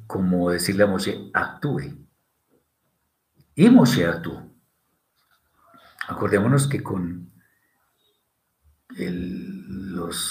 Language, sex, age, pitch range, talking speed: Spanish, male, 50-69, 100-140 Hz, 75 wpm